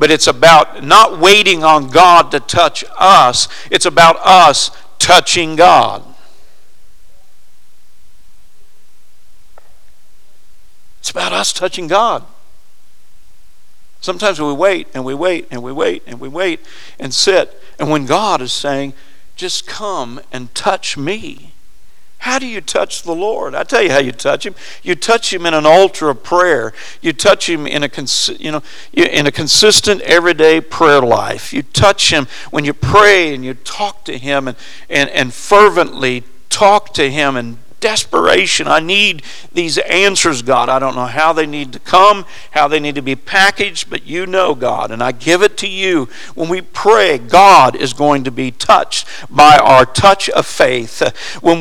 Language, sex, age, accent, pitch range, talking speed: English, male, 50-69, American, 135-190 Hz, 165 wpm